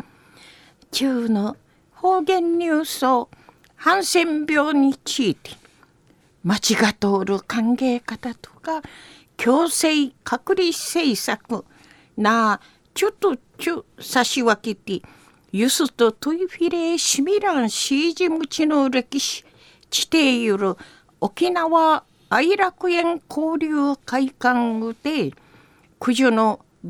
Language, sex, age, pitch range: Japanese, female, 50-69, 215-330 Hz